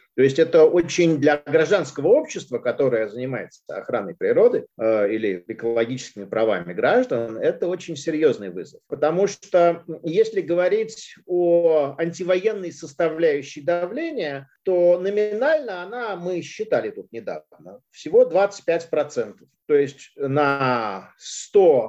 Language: Russian